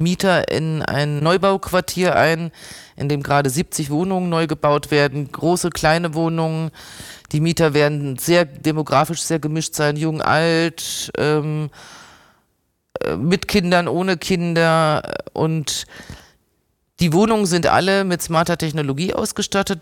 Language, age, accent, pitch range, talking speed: German, 30-49, German, 145-170 Hz, 120 wpm